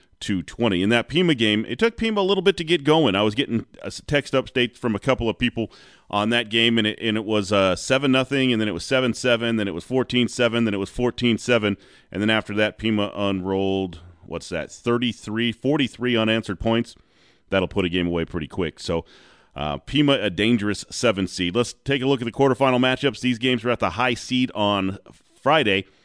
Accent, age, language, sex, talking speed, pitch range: American, 30-49, English, male, 215 wpm, 100-130 Hz